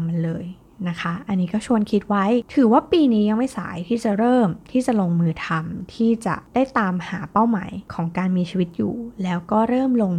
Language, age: Thai, 20-39